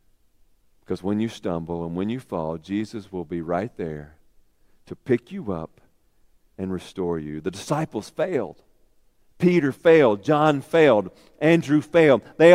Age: 50-69